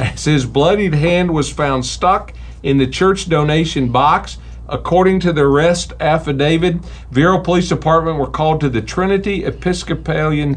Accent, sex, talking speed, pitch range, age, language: American, male, 150 wpm, 125-155 Hz, 50-69, English